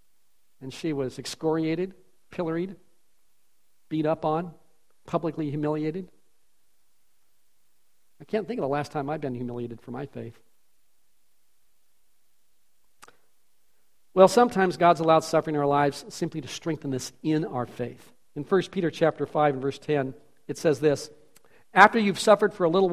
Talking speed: 145 wpm